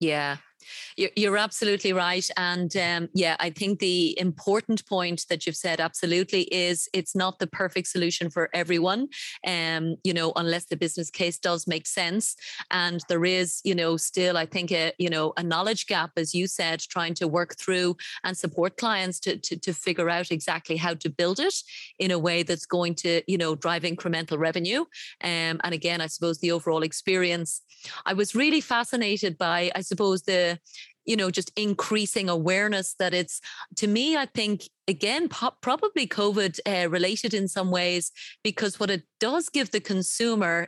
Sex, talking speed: female, 180 wpm